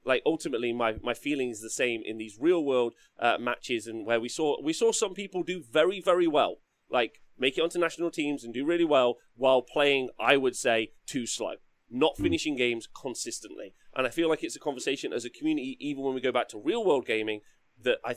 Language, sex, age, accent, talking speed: English, male, 30-49, British, 225 wpm